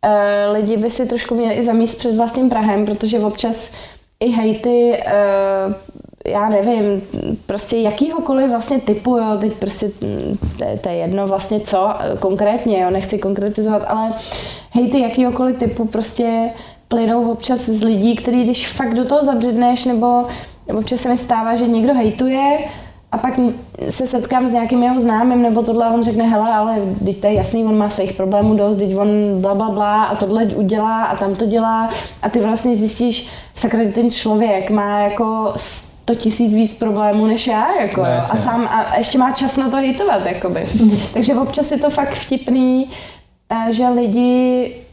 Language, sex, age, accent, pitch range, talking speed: Czech, female, 20-39, native, 210-245 Hz, 165 wpm